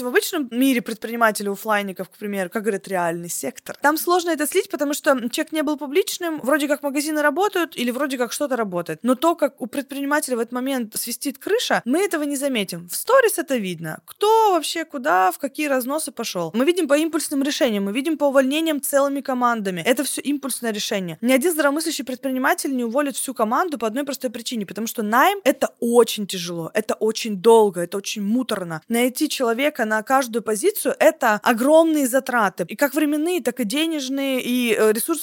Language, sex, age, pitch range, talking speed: Russian, female, 20-39, 230-300 Hz, 190 wpm